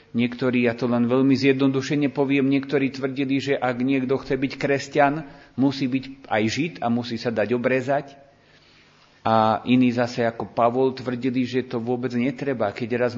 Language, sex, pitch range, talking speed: Slovak, male, 120-140 Hz, 165 wpm